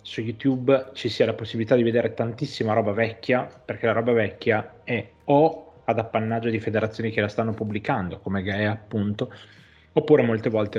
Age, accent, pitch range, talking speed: 20-39, native, 100-115 Hz, 170 wpm